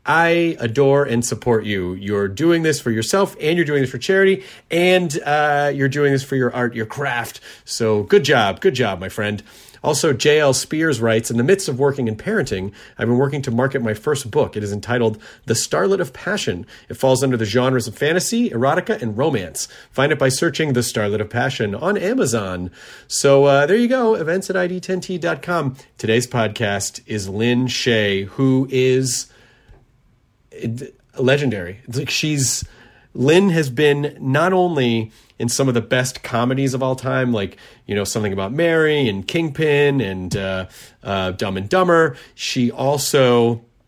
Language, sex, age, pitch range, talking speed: English, male, 30-49, 110-145 Hz, 175 wpm